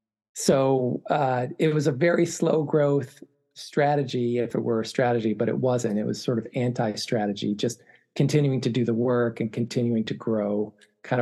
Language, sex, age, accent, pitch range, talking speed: English, male, 40-59, American, 110-135 Hz, 180 wpm